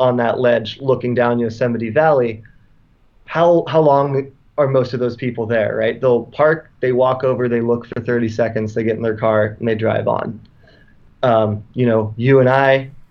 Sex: male